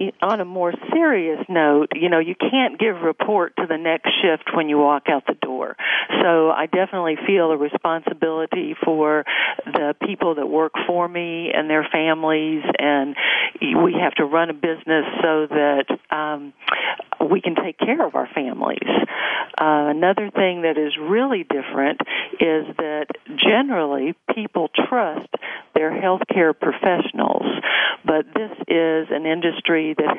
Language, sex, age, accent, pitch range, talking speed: English, female, 50-69, American, 155-185 Hz, 150 wpm